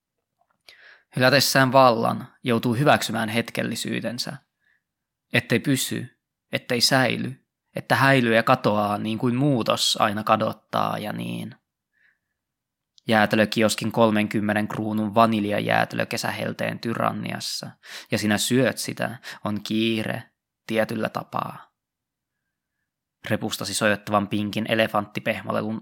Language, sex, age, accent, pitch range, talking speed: Finnish, male, 20-39, native, 105-115 Hz, 90 wpm